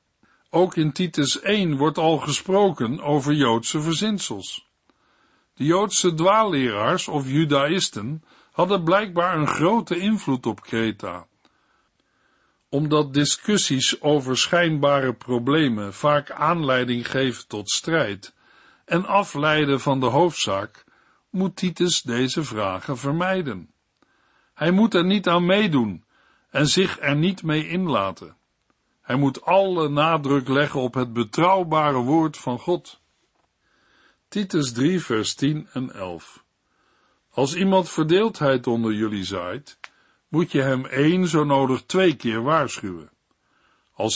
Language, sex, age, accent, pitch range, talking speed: Dutch, male, 60-79, Dutch, 130-175 Hz, 120 wpm